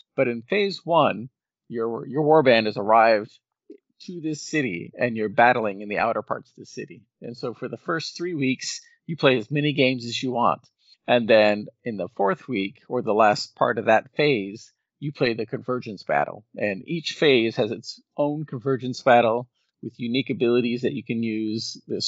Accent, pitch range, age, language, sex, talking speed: American, 115-140 Hz, 40-59, English, male, 195 wpm